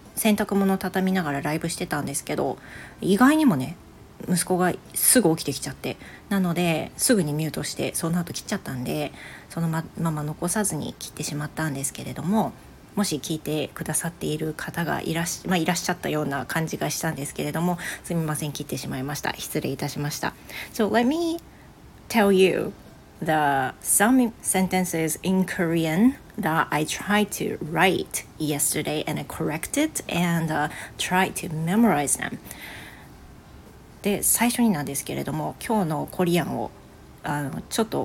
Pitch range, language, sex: 155-195 Hz, Japanese, female